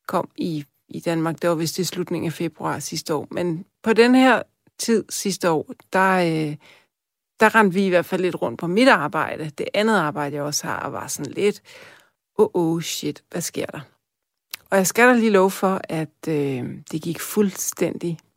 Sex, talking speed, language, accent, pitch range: female, 195 wpm, Danish, native, 165-205 Hz